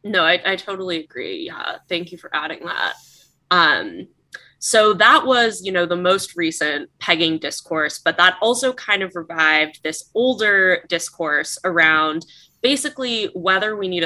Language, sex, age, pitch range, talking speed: English, female, 20-39, 160-205 Hz, 155 wpm